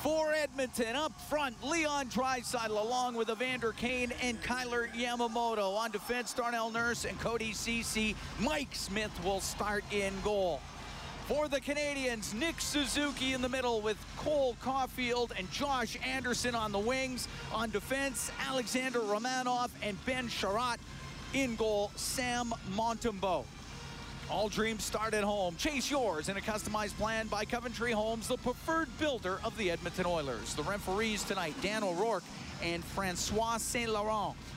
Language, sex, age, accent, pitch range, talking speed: English, male, 40-59, American, 200-250 Hz, 145 wpm